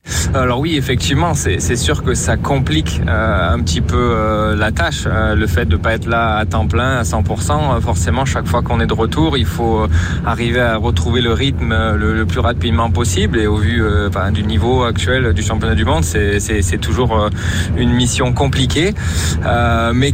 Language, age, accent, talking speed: French, 20-39, French, 210 wpm